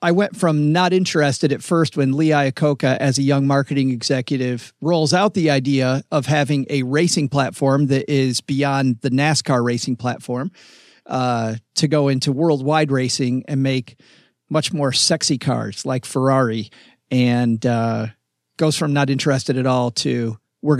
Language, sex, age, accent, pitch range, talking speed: English, male, 40-59, American, 125-150 Hz, 160 wpm